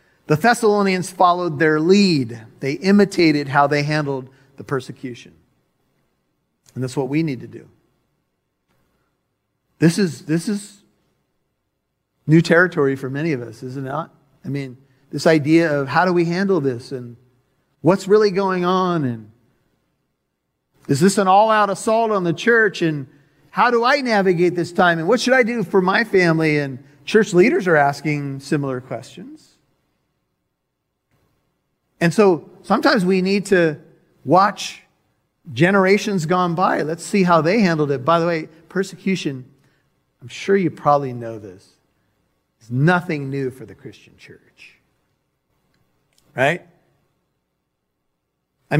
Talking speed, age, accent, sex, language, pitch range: 140 wpm, 40-59, American, male, English, 140-195 Hz